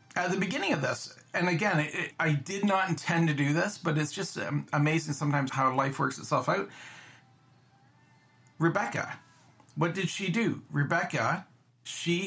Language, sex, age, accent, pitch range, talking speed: English, male, 50-69, American, 130-170 Hz, 150 wpm